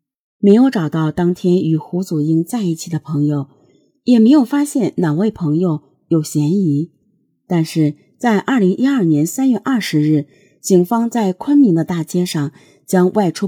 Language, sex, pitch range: Chinese, female, 150-215 Hz